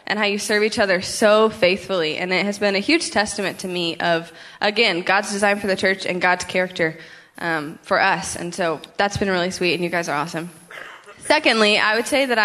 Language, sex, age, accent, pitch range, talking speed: English, female, 10-29, American, 180-215 Hz, 220 wpm